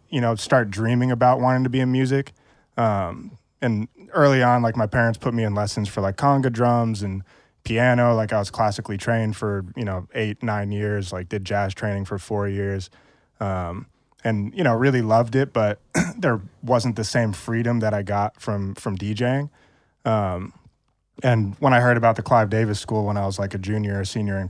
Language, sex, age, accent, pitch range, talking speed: English, male, 20-39, American, 100-115 Hz, 205 wpm